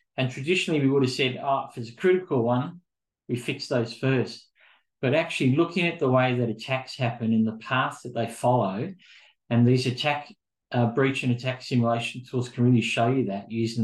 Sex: male